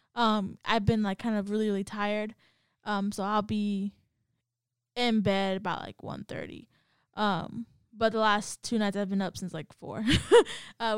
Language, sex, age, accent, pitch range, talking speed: English, female, 10-29, American, 195-225 Hz, 175 wpm